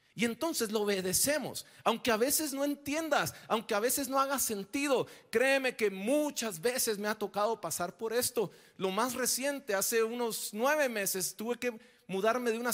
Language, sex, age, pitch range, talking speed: Spanish, male, 40-59, 175-250 Hz, 175 wpm